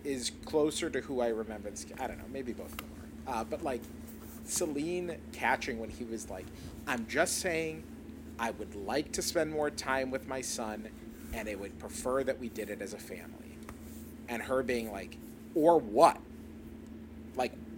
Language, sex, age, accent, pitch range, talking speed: English, male, 30-49, American, 110-145 Hz, 180 wpm